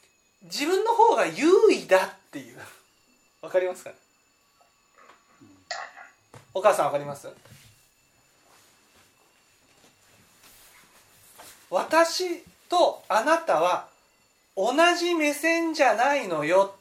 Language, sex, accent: Japanese, male, native